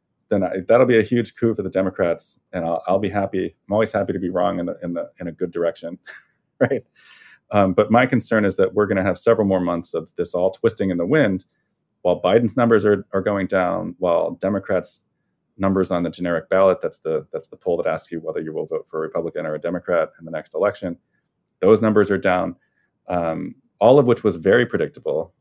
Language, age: English, 30-49